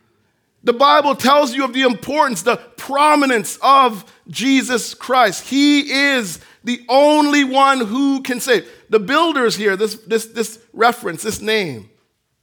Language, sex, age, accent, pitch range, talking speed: English, male, 40-59, American, 230-290 Hz, 140 wpm